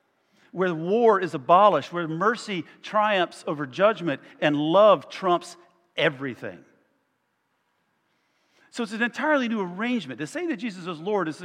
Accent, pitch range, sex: American, 150-225 Hz, male